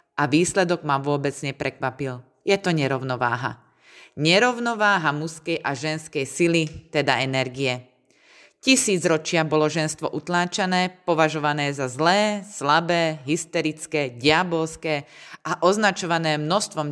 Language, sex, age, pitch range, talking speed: Slovak, female, 30-49, 145-175 Hz, 105 wpm